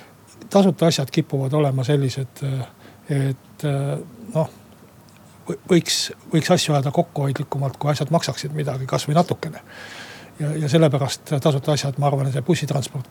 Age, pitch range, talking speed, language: 60-79, 140-160 Hz, 130 wpm, Finnish